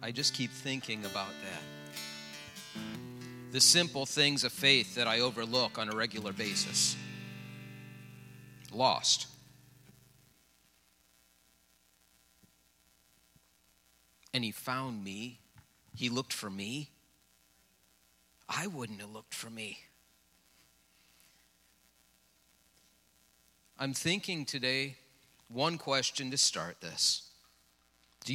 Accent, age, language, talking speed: American, 40-59, English, 90 wpm